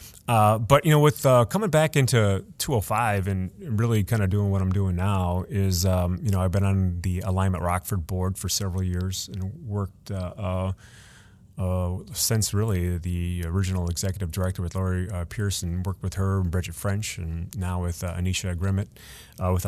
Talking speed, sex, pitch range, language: 190 wpm, male, 90-105 Hz, English